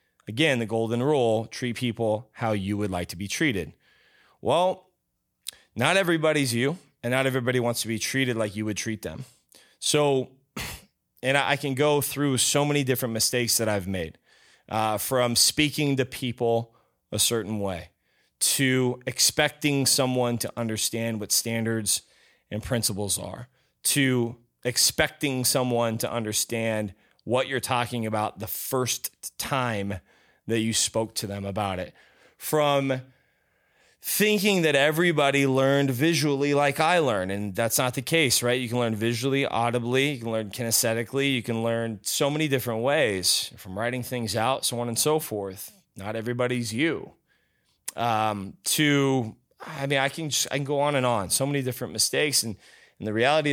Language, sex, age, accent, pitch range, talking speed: English, male, 30-49, American, 110-135 Hz, 160 wpm